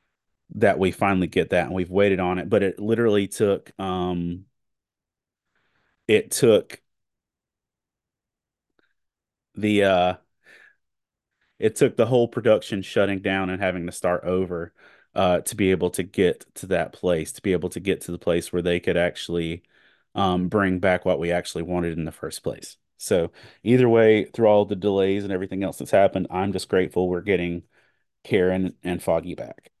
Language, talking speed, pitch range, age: English, 170 wpm, 90-105 Hz, 30-49